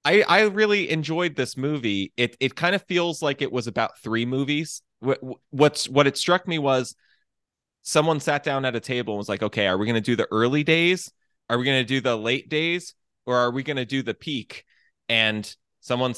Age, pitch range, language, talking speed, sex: 20-39, 110-145 Hz, English, 225 wpm, male